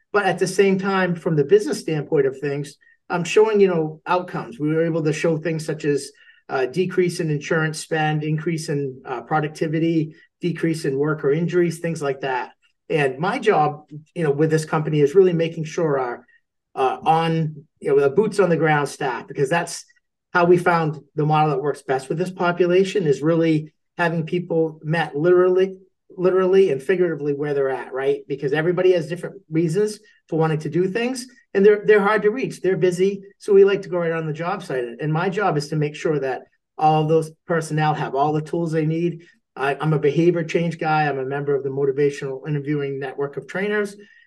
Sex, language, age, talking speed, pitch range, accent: male, English, 40-59, 200 wpm, 150-185 Hz, American